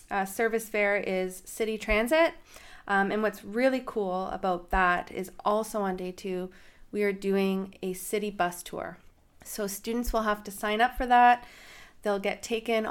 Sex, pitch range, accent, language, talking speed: female, 195-230 Hz, American, English, 170 wpm